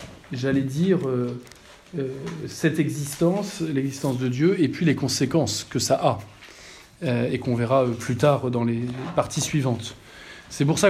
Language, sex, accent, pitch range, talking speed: French, male, French, 125-155 Hz, 165 wpm